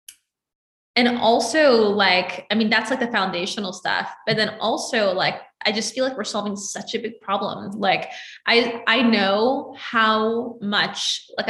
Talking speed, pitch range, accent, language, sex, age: 160 wpm, 205-240 Hz, American, English, female, 20-39